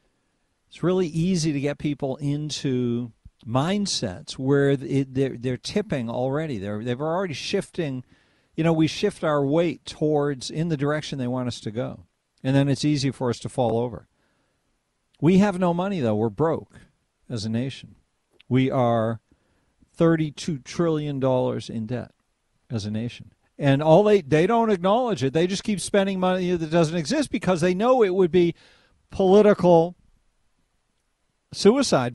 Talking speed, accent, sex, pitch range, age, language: 155 wpm, American, male, 125-175 Hz, 50-69, English